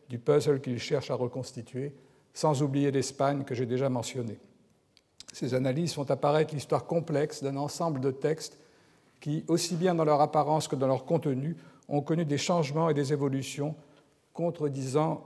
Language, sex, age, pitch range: French, male, 60-79, 135-155 Hz